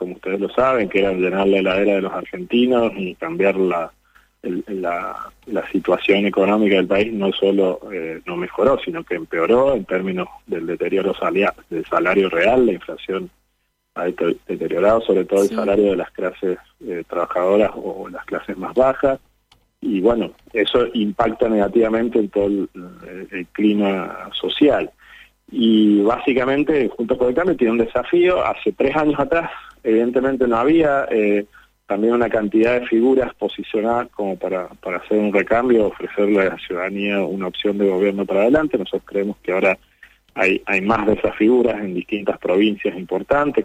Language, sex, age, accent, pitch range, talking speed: Spanish, male, 30-49, Argentinian, 95-120 Hz, 165 wpm